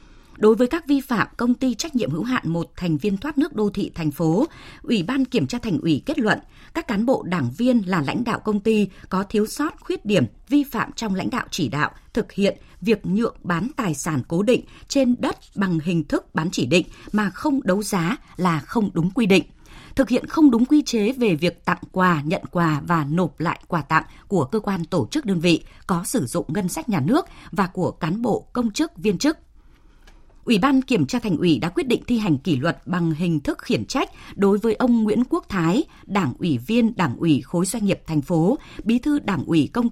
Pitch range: 170-245 Hz